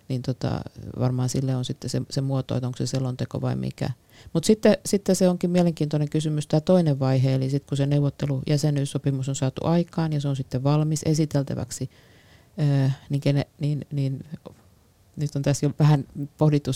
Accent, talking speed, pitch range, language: native, 180 wpm, 135-150 Hz, Finnish